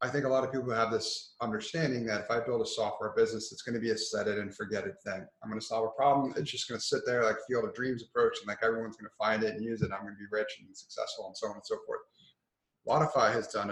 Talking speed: 295 wpm